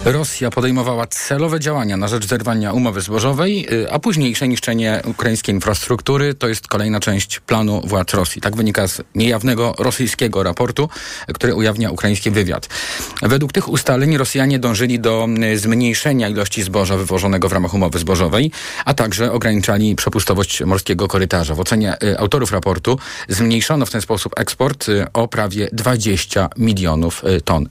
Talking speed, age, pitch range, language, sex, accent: 140 wpm, 40-59, 95-120 Hz, Polish, male, native